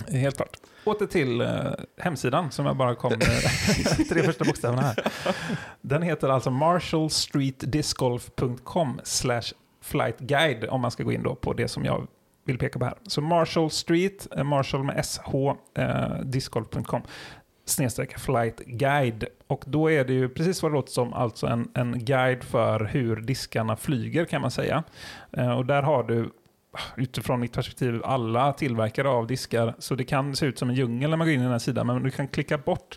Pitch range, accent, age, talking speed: 120-150 Hz, native, 30-49, 175 wpm